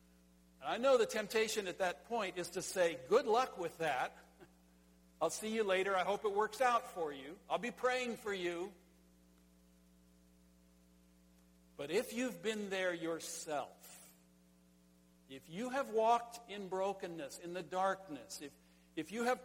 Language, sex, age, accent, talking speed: English, male, 60-79, American, 155 wpm